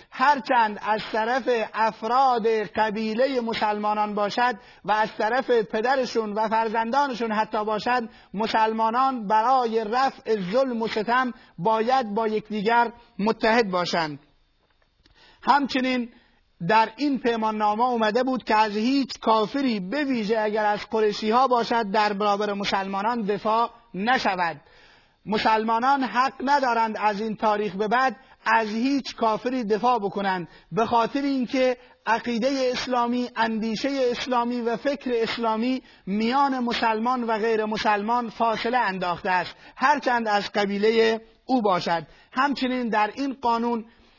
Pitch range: 215-250 Hz